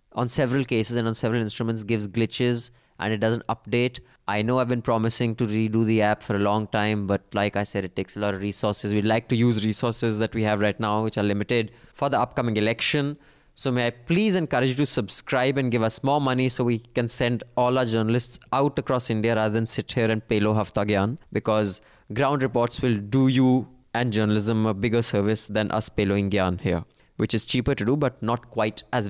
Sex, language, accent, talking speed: male, English, Indian, 225 wpm